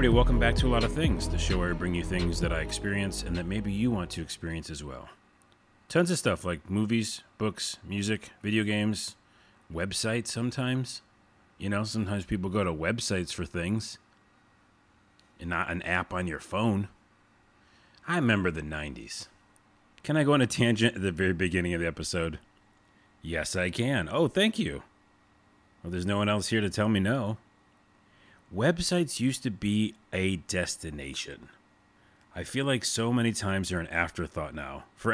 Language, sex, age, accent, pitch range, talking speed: English, male, 30-49, American, 90-110 Hz, 180 wpm